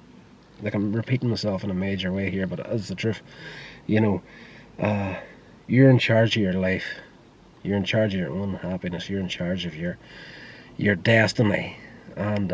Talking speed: 180 wpm